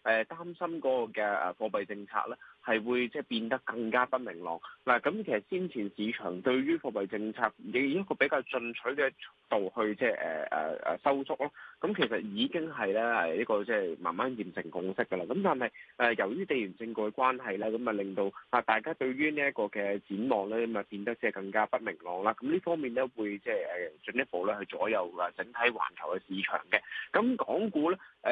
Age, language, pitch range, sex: 20-39, Chinese, 105-145 Hz, male